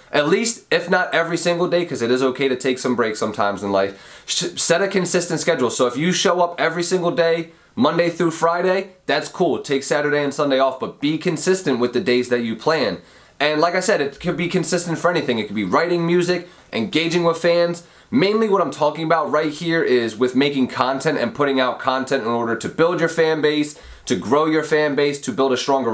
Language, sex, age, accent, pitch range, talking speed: English, male, 20-39, American, 130-170 Hz, 225 wpm